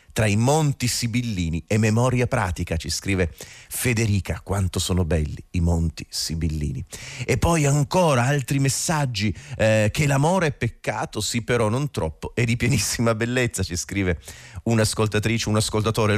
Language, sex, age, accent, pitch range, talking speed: Italian, male, 30-49, native, 95-125 Hz, 145 wpm